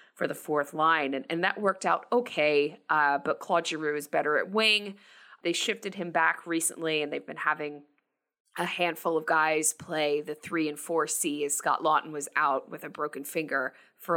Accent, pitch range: American, 150-180 Hz